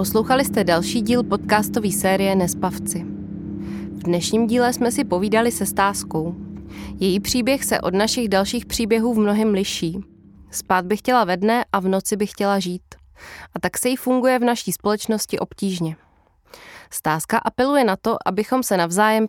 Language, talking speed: Czech, 160 wpm